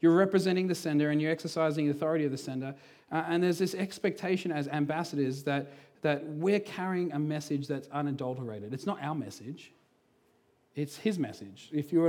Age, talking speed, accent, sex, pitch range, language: 40-59, 180 wpm, Australian, male, 135-155 Hz, English